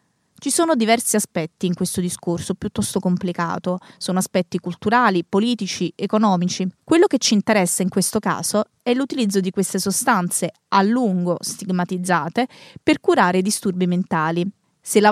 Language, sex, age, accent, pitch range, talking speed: Italian, female, 20-39, native, 180-230 Hz, 140 wpm